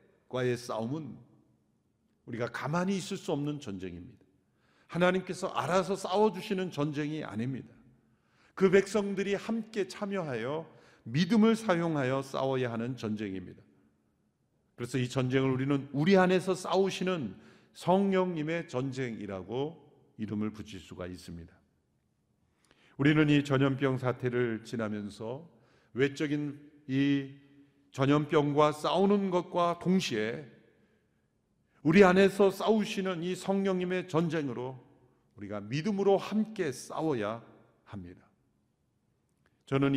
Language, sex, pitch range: Korean, male, 120-175 Hz